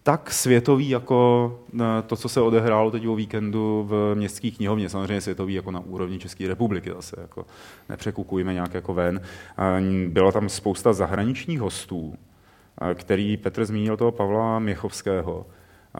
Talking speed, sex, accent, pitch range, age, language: 135 wpm, male, native, 95-110 Hz, 30-49, Czech